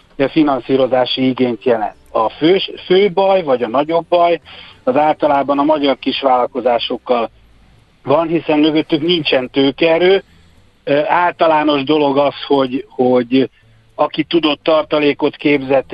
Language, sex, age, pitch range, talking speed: Hungarian, male, 60-79, 125-155 Hz, 115 wpm